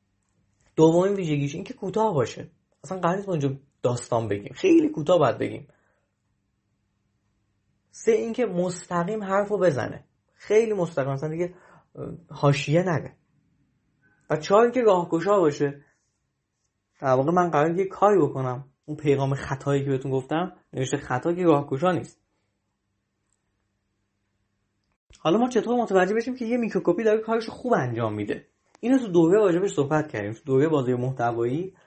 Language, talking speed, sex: Persian, 135 wpm, male